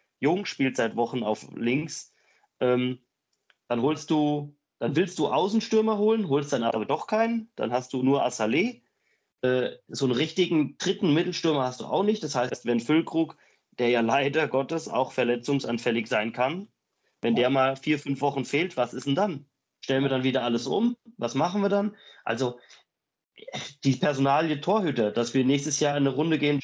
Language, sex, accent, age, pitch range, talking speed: German, male, German, 30-49, 125-155 Hz, 180 wpm